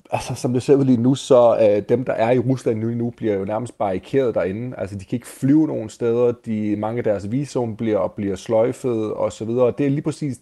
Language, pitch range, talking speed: Danish, 110-135 Hz, 240 wpm